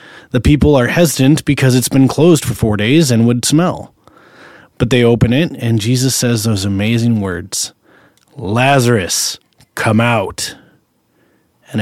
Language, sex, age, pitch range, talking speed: English, male, 30-49, 105-130 Hz, 140 wpm